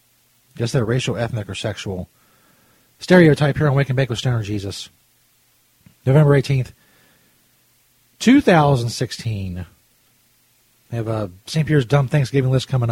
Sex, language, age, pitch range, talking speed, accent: male, English, 30-49, 115-155 Hz, 135 wpm, American